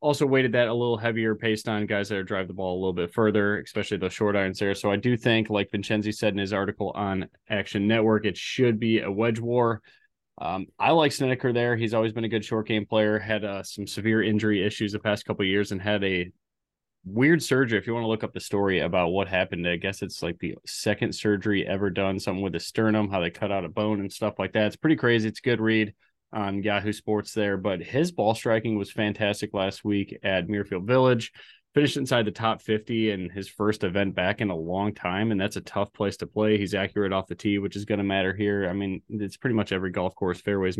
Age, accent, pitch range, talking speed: 20-39, American, 100-110 Hz, 245 wpm